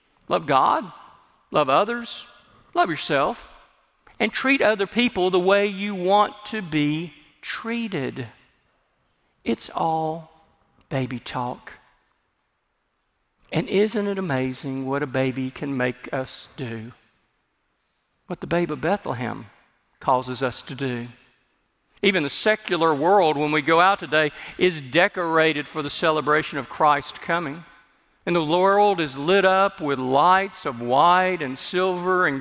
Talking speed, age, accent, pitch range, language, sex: 130 wpm, 50-69, American, 140-200 Hz, English, male